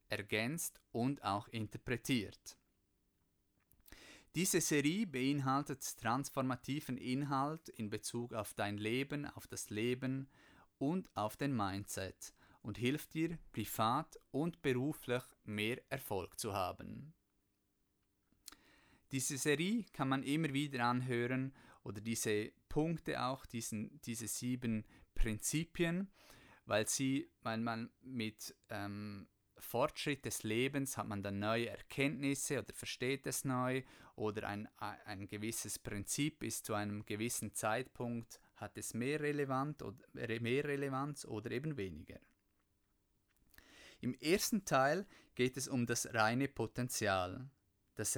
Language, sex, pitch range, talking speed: German, male, 105-140 Hz, 120 wpm